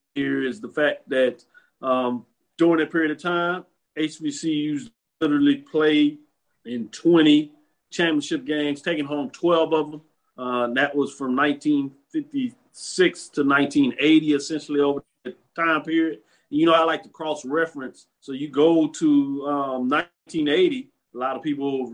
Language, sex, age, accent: English, male, 40-59, American